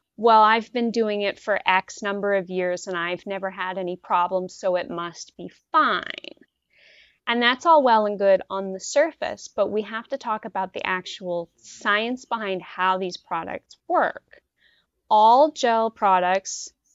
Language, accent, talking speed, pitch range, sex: English, American, 165 wpm, 190-250 Hz, female